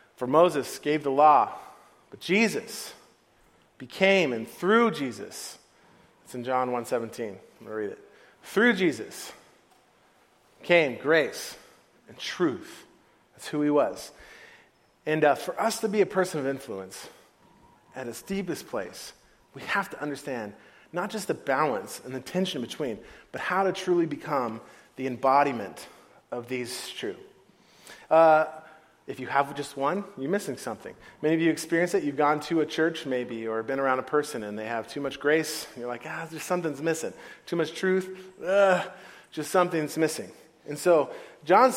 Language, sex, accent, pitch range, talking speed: English, male, American, 145-205 Hz, 165 wpm